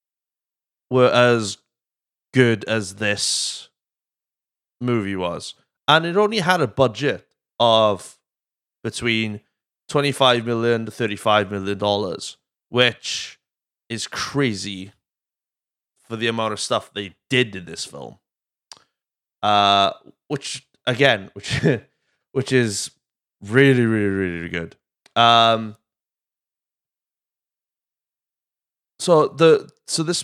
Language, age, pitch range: English, 20-39, 100-120 Hz